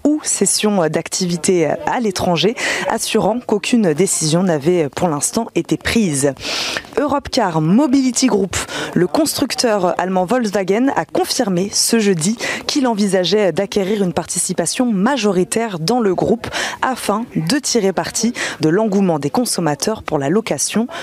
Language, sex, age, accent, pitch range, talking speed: French, female, 20-39, French, 175-235 Hz, 125 wpm